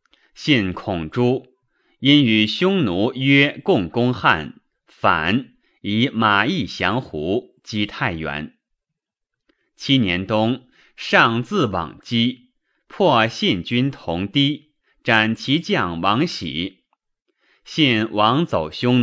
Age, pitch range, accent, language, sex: 30-49, 100-140 Hz, native, Chinese, male